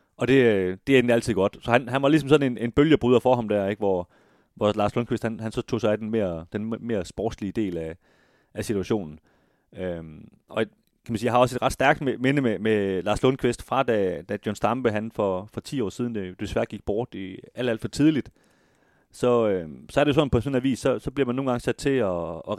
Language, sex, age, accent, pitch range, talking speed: Danish, male, 30-49, native, 100-125 Hz, 250 wpm